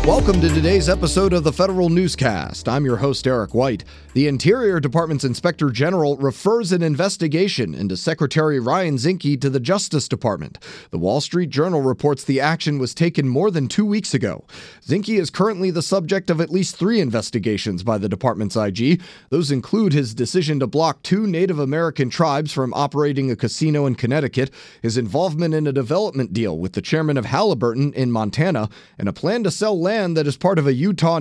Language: English